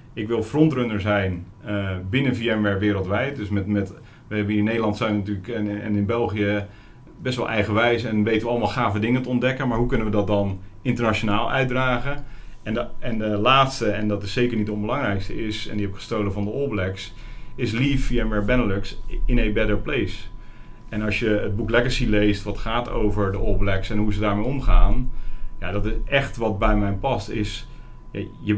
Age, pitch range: 40-59, 105-125 Hz